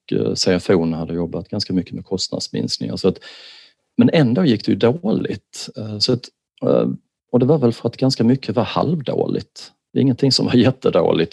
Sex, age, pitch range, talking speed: male, 40-59, 80-115 Hz, 170 wpm